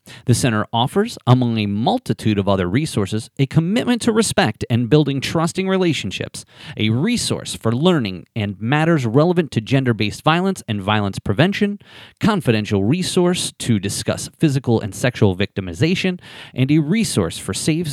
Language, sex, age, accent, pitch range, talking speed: English, male, 30-49, American, 110-170 Hz, 145 wpm